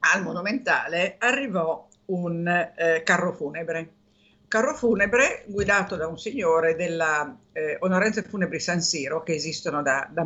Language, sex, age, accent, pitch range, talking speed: Italian, female, 50-69, native, 165-215 Hz, 135 wpm